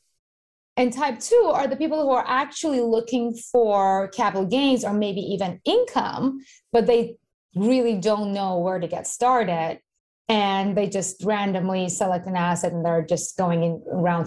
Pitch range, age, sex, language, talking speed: 175-235 Hz, 20-39, female, English, 165 wpm